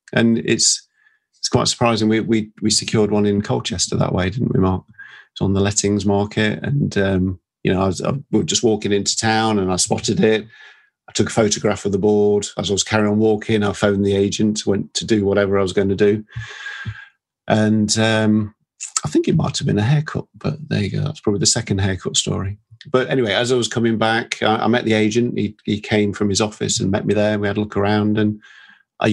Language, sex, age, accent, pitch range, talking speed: English, male, 40-59, British, 100-120 Hz, 235 wpm